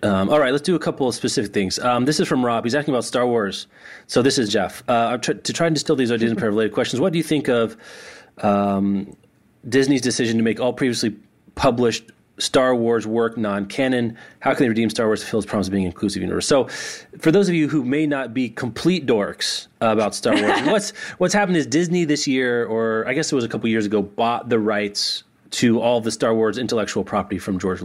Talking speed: 245 wpm